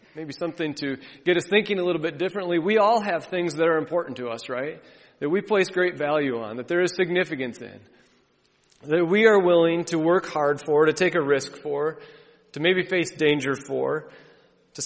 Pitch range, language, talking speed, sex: 145-185 Hz, English, 200 wpm, male